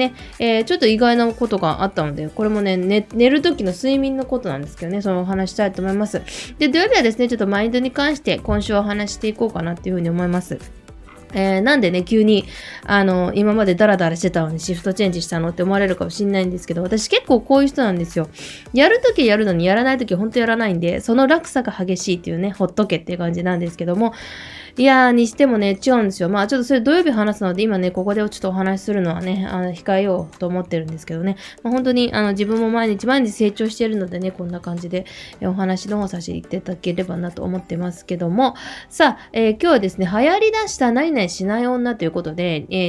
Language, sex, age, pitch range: Japanese, female, 20-39, 180-250 Hz